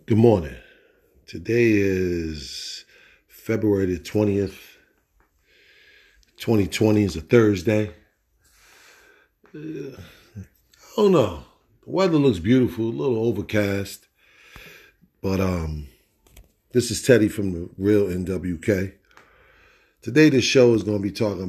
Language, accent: English, American